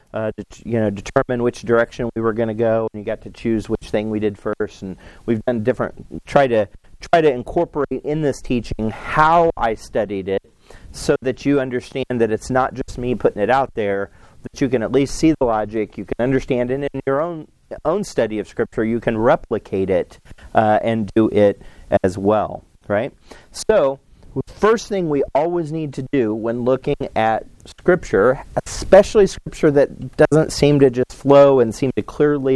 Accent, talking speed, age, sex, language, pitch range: American, 195 wpm, 40-59, male, English, 110-145 Hz